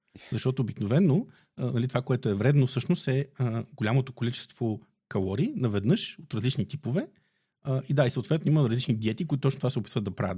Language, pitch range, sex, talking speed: Bulgarian, 110-150 Hz, male, 170 wpm